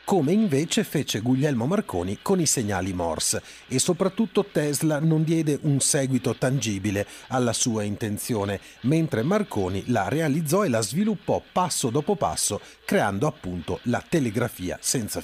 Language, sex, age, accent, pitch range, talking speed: English, male, 40-59, Italian, 110-165 Hz, 140 wpm